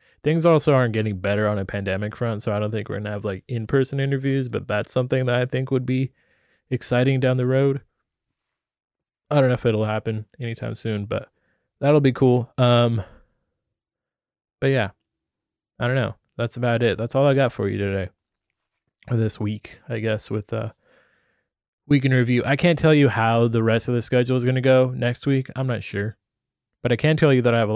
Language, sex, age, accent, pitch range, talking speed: English, male, 20-39, American, 105-130 Hz, 210 wpm